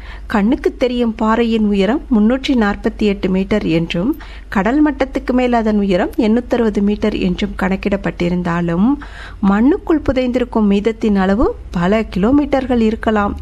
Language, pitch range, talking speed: Tamil, 195-250 Hz, 110 wpm